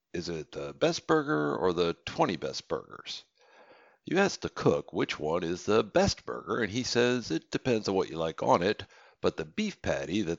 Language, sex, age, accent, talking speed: English, male, 60-79, American, 210 wpm